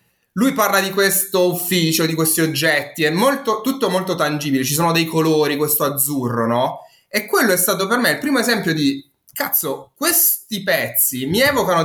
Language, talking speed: Italian, 170 wpm